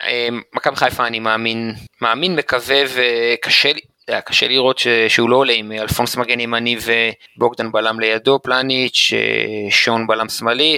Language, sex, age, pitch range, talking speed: Hebrew, male, 30-49, 115-130 Hz, 120 wpm